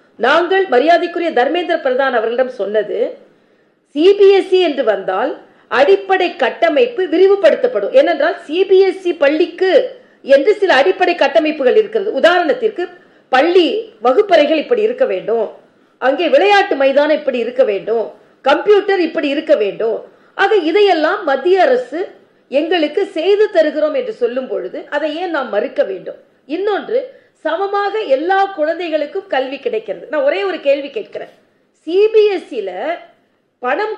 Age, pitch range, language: 40-59, 295-405 Hz, Tamil